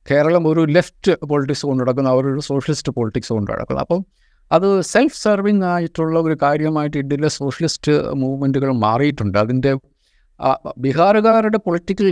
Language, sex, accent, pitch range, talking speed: Malayalam, male, native, 125-155 Hz, 120 wpm